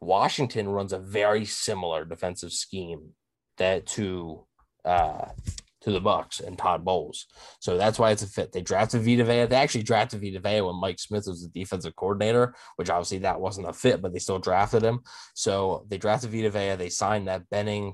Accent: American